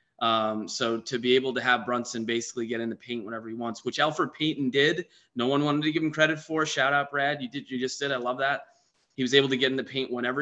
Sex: male